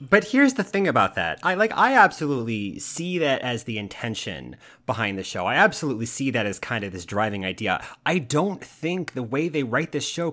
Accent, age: American, 30-49